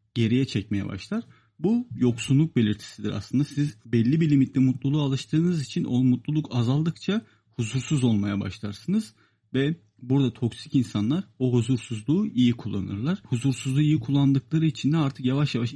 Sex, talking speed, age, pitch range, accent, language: male, 135 wpm, 40-59, 115-140 Hz, native, Turkish